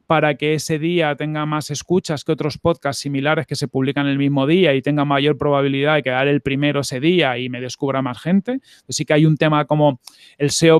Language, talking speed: Spanish, 230 wpm